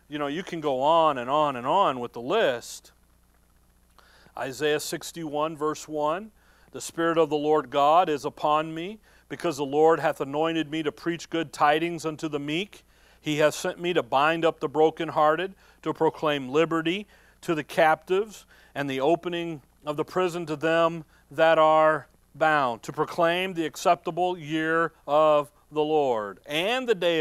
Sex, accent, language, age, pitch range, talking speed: male, American, English, 40-59, 150-175 Hz, 170 wpm